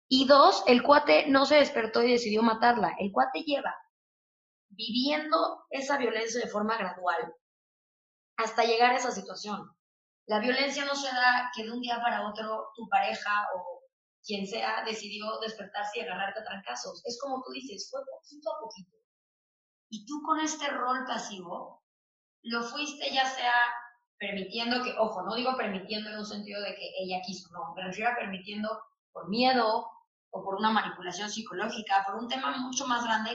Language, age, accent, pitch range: Spanish, 20-39, Mexican, 205-265 Hz